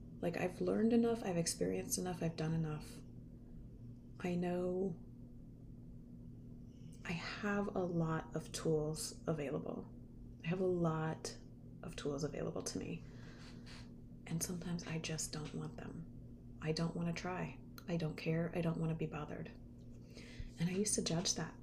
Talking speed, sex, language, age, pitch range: 155 wpm, female, English, 30-49, 120-175 Hz